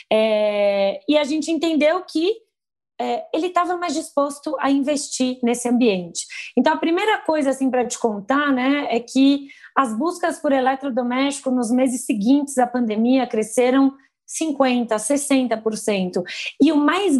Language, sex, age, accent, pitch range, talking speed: Portuguese, female, 20-39, Brazilian, 235-285 Hz, 135 wpm